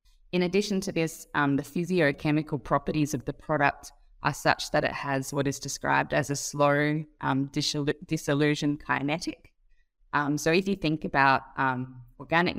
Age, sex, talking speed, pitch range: 20-39, female, 155 wpm, 135-155 Hz